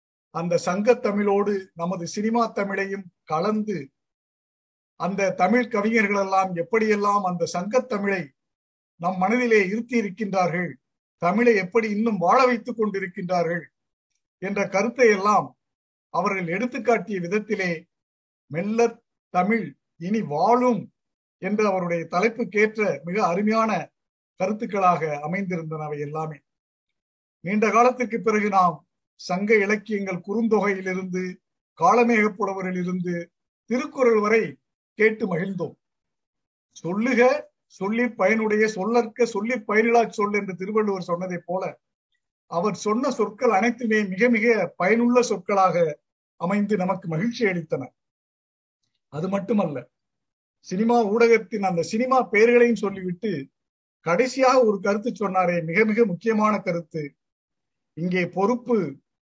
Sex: male